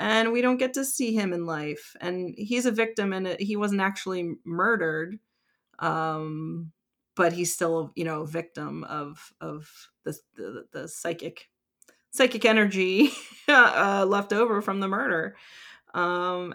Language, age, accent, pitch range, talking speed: English, 30-49, American, 165-215 Hz, 150 wpm